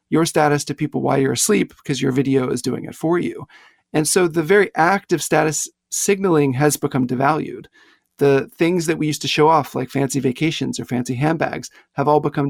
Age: 40-59